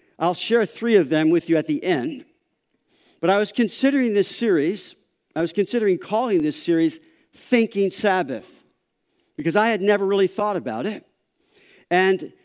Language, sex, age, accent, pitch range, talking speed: English, male, 50-69, American, 170-215 Hz, 160 wpm